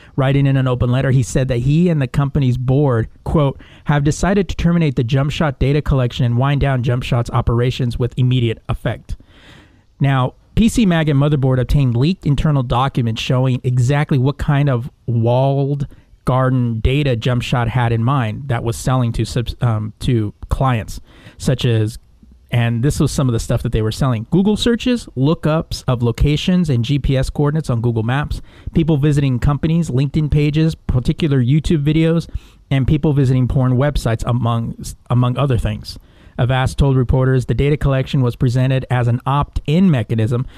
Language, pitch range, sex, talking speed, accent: English, 120-145 Hz, male, 170 wpm, American